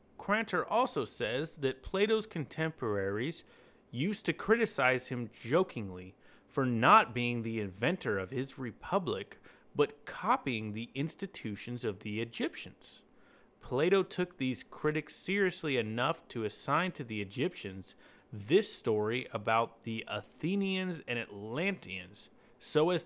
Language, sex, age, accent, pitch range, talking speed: English, male, 30-49, American, 110-170 Hz, 120 wpm